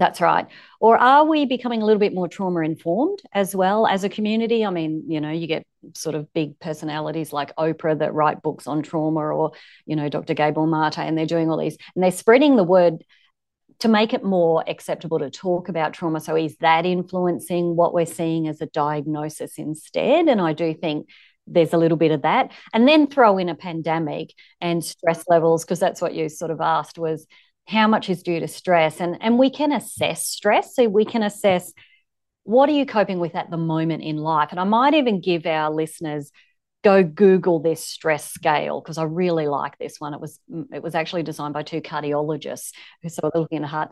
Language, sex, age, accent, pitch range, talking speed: English, female, 30-49, Australian, 155-195 Hz, 210 wpm